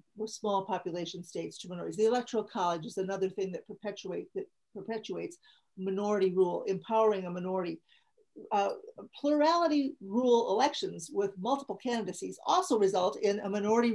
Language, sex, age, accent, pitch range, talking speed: English, female, 50-69, American, 190-235 Hz, 140 wpm